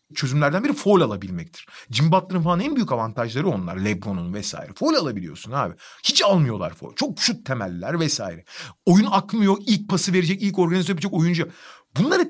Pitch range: 125-195 Hz